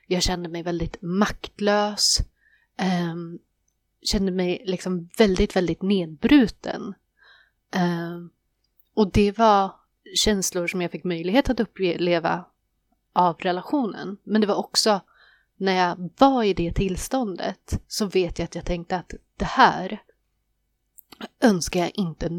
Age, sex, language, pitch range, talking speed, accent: 30-49, female, Swedish, 175-210 Hz, 125 wpm, native